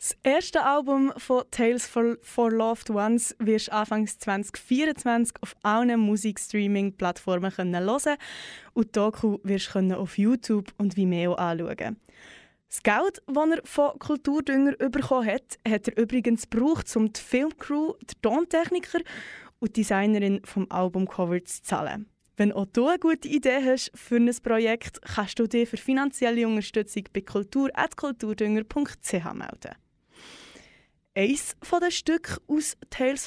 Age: 20-39